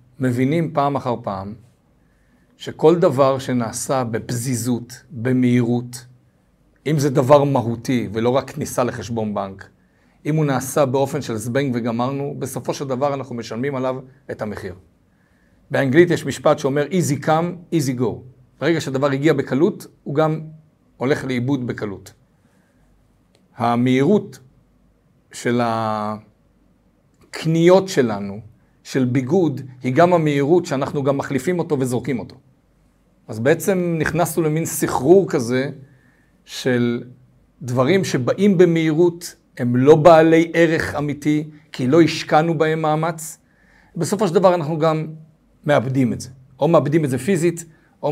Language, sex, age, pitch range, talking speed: Hebrew, male, 50-69, 125-155 Hz, 125 wpm